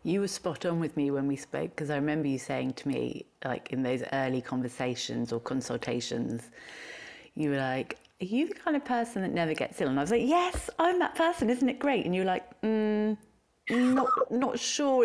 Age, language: 30-49, English